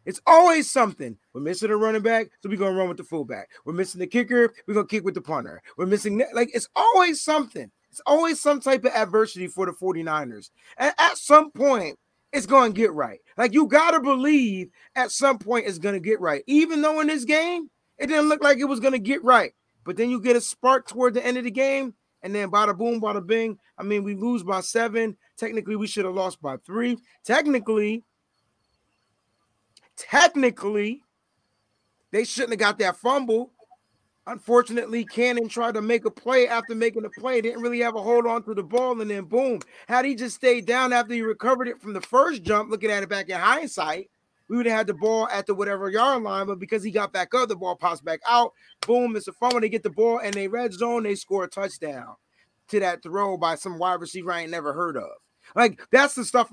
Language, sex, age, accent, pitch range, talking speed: English, male, 30-49, American, 195-250 Hz, 225 wpm